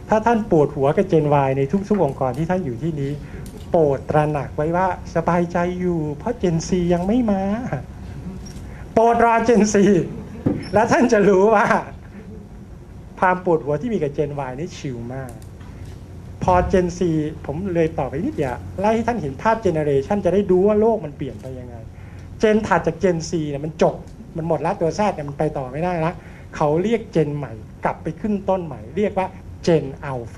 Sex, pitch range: male, 125-185 Hz